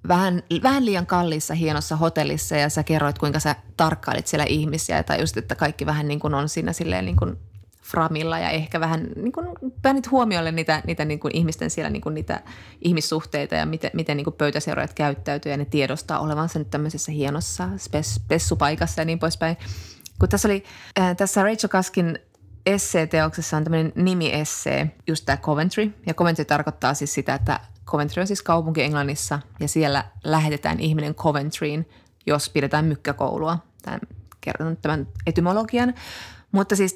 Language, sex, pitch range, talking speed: Finnish, female, 145-175 Hz, 160 wpm